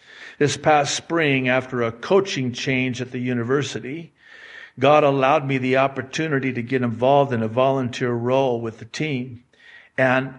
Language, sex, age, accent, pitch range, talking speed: English, male, 60-79, American, 125-150 Hz, 150 wpm